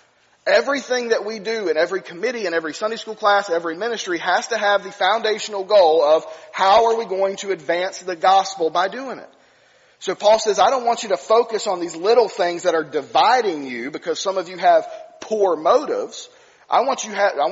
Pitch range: 175-225 Hz